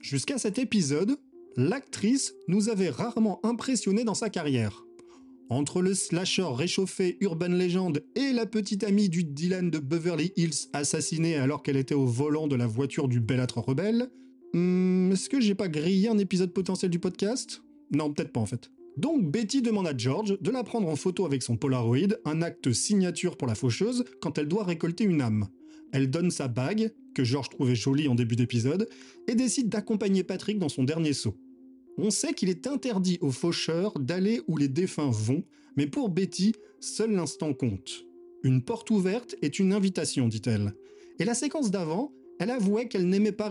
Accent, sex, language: French, male, French